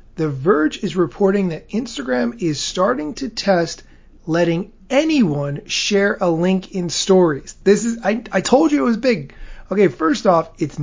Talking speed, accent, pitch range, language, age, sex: 165 wpm, American, 155-200 Hz, English, 30-49, male